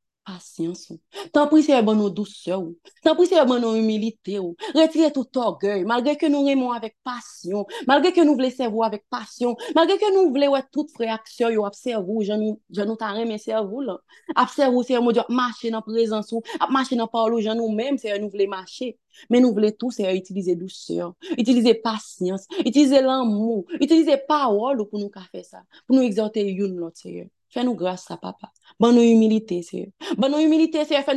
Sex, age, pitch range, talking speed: female, 30-49, 200-270 Hz, 195 wpm